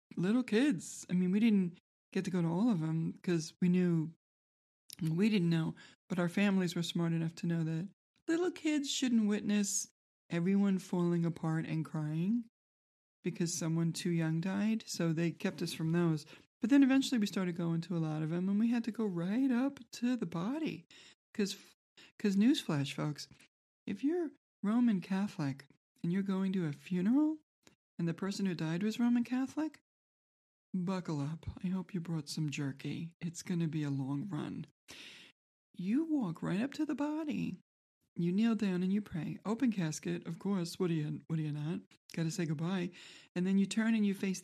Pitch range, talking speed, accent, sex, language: 165-215 Hz, 190 wpm, American, male, English